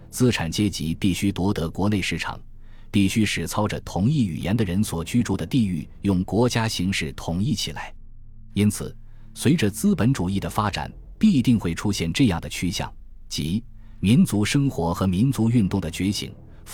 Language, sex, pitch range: Chinese, male, 85-115 Hz